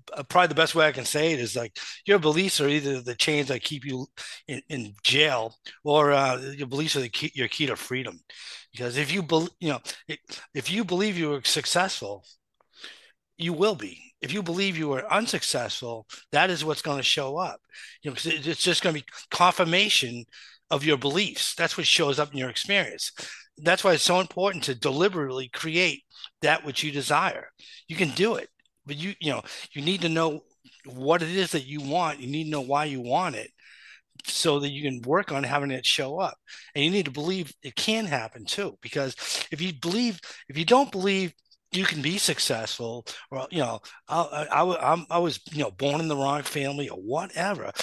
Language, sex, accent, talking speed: English, male, American, 210 wpm